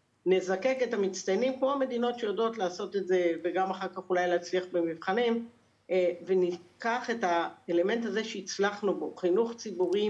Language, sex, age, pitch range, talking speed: Hebrew, female, 50-69, 180-225 Hz, 135 wpm